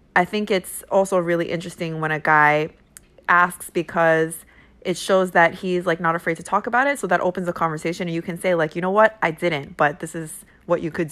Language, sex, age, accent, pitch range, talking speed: English, female, 20-39, American, 150-185 Hz, 230 wpm